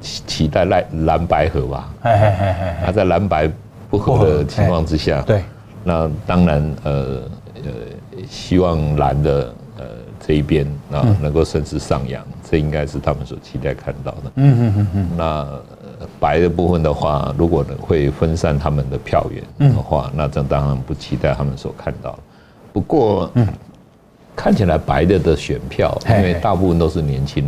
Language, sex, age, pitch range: Chinese, male, 60-79, 70-90 Hz